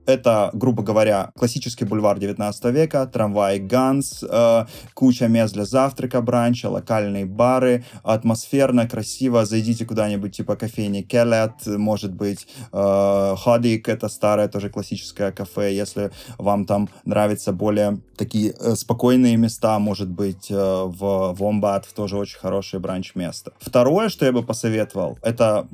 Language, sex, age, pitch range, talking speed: Russian, male, 20-39, 105-125 Hz, 135 wpm